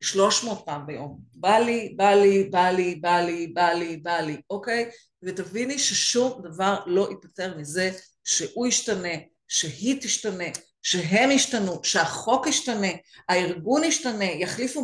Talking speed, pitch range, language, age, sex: 140 wpm, 185-270 Hz, Hebrew, 50-69, female